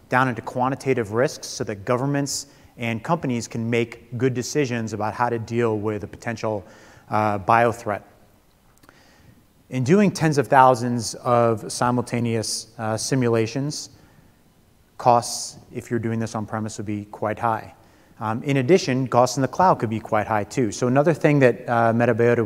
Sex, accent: male, American